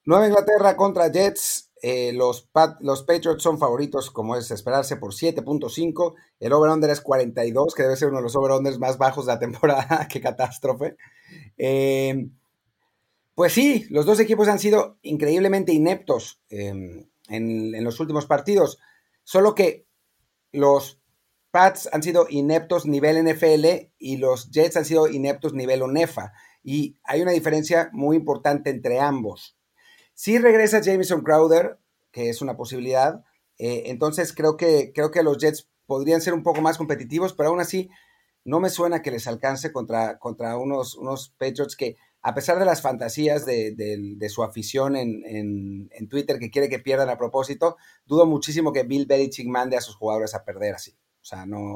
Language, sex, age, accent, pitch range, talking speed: Spanish, male, 40-59, Mexican, 125-165 Hz, 175 wpm